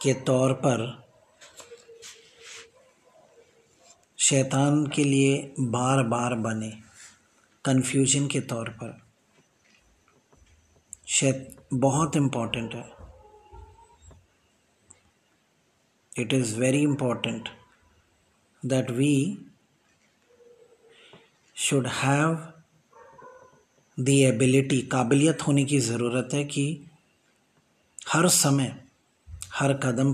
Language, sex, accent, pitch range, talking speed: English, male, Indian, 120-150 Hz, 65 wpm